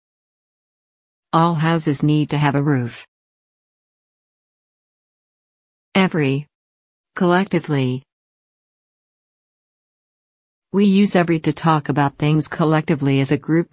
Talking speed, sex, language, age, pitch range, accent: 85 wpm, female, English, 50-69, 140-170 Hz, American